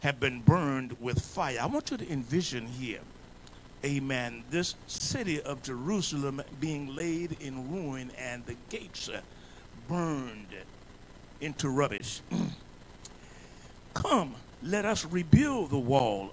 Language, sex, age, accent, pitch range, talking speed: English, male, 50-69, American, 130-185 Hz, 120 wpm